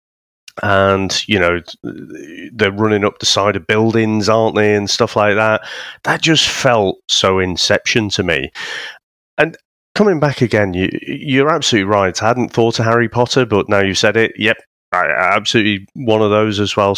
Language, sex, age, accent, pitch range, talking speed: English, male, 30-49, British, 95-130 Hz, 175 wpm